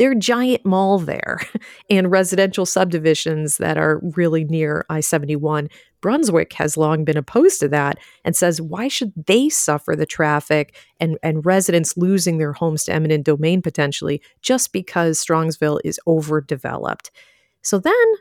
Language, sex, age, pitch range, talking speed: English, female, 40-59, 155-185 Hz, 150 wpm